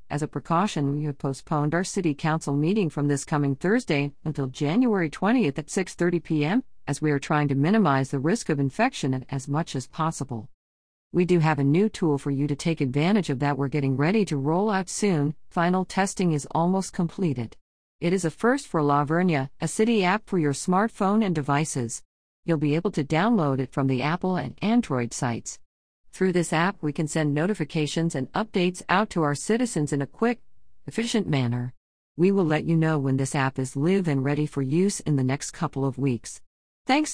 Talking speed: 200 wpm